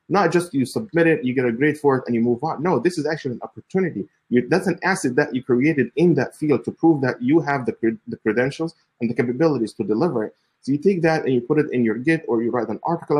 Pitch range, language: 120-150 Hz, English